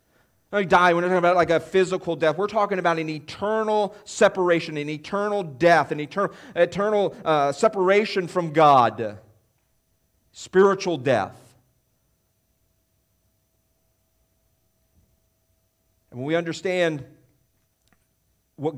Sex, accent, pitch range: male, American, 105-145 Hz